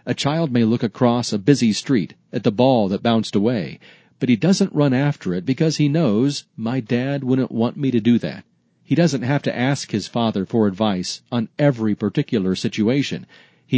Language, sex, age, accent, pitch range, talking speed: English, male, 40-59, American, 110-140 Hz, 195 wpm